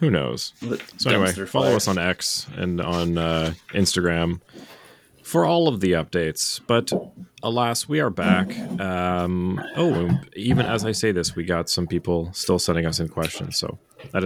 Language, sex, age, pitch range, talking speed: English, male, 30-49, 85-110 Hz, 170 wpm